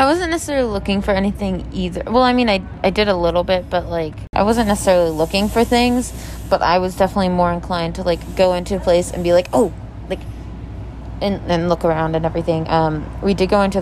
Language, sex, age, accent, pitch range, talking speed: English, female, 20-39, American, 165-195 Hz, 225 wpm